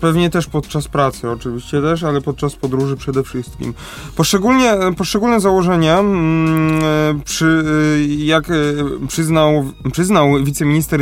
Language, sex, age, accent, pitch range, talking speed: Polish, male, 20-39, native, 150-180 Hz, 100 wpm